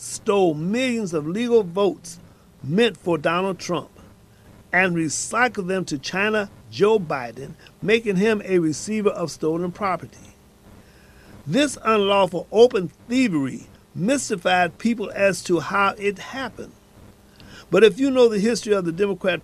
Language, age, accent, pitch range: English, 50-69, American, 165-215 Hz